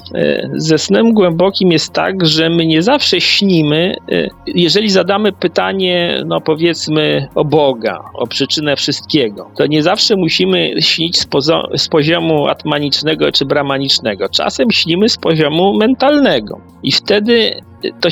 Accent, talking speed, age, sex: native, 125 wpm, 40-59, male